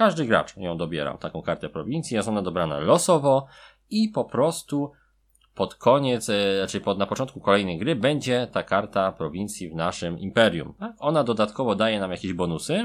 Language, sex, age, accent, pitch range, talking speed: Polish, male, 20-39, native, 90-130 Hz, 165 wpm